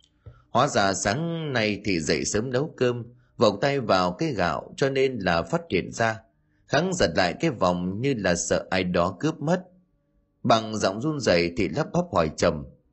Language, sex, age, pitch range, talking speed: Vietnamese, male, 20-39, 90-140 Hz, 190 wpm